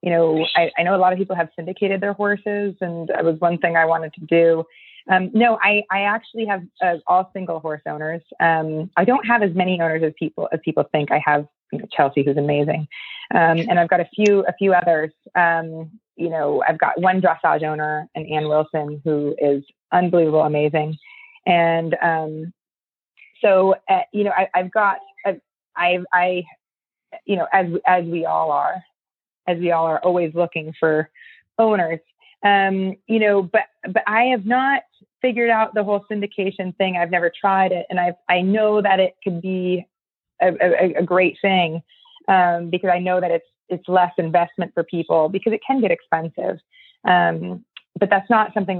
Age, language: 30-49, English